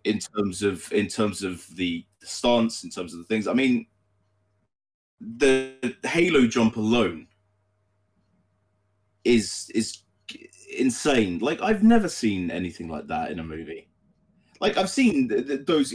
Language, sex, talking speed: English, male, 145 wpm